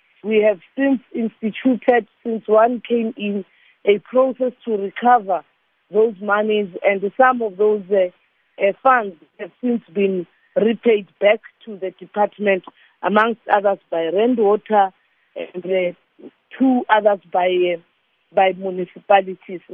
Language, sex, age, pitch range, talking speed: English, female, 50-69, 205-245 Hz, 120 wpm